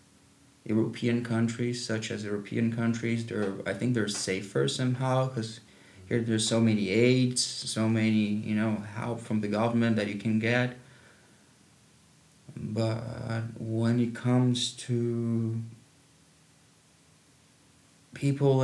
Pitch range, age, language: 115-130 Hz, 20-39, English